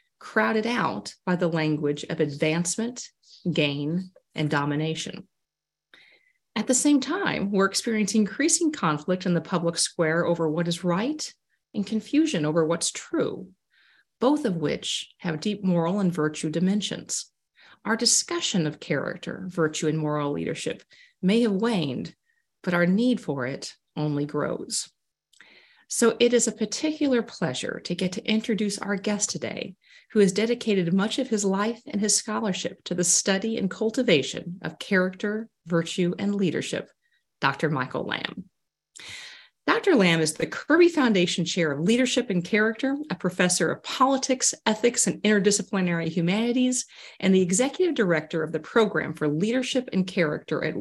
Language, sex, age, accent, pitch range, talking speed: English, female, 40-59, American, 170-235 Hz, 150 wpm